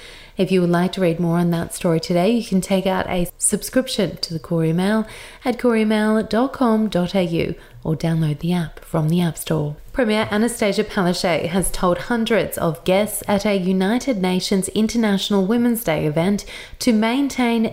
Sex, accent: female, Australian